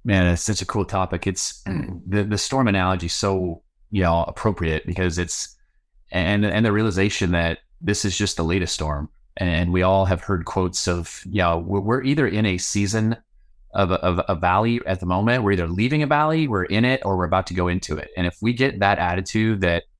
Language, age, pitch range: English, 30-49, 90-115 Hz